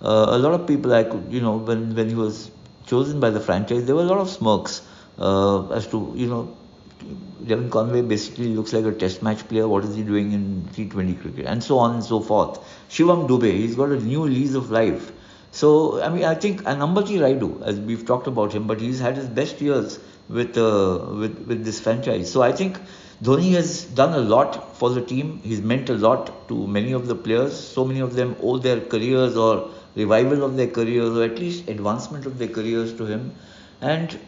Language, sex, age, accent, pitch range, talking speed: English, male, 60-79, Indian, 110-135 Hz, 220 wpm